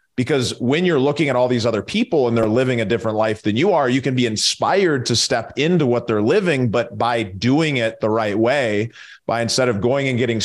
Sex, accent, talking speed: male, American, 235 wpm